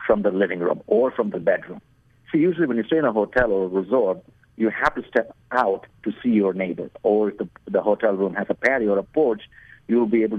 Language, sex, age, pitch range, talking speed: English, male, 50-69, 100-125 Hz, 250 wpm